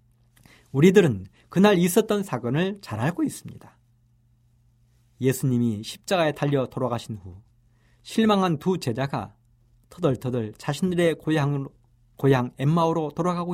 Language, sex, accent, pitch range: Korean, male, native, 120-175 Hz